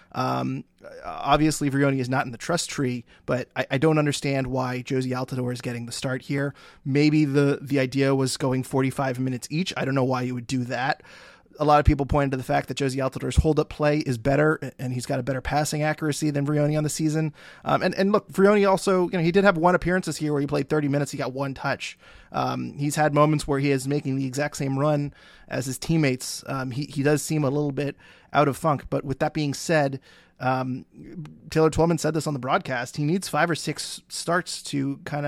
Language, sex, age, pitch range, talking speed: English, male, 20-39, 135-155 Hz, 235 wpm